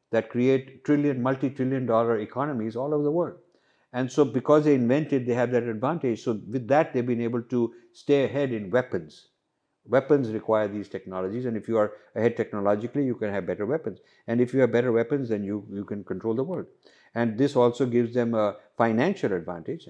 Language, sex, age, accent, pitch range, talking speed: English, male, 50-69, Indian, 105-135 Hz, 200 wpm